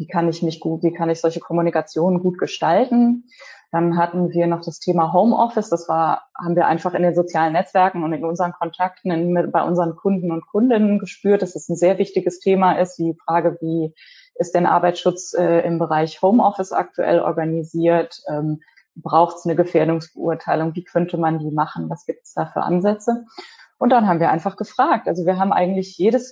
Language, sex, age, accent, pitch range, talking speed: German, female, 20-39, German, 165-190 Hz, 185 wpm